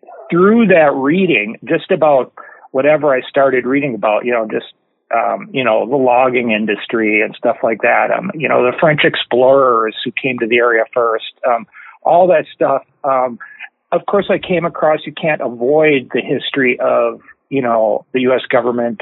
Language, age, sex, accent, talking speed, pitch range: English, 40-59, male, American, 175 wpm, 120-150 Hz